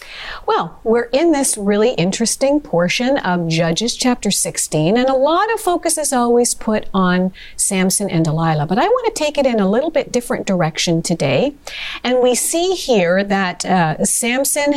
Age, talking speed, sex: 50-69, 175 wpm, female